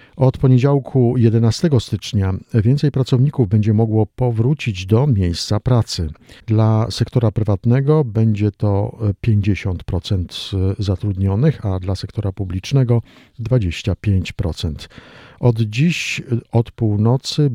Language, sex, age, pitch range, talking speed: Polish, male, 50-69, 100-125 Hz, 95 wpm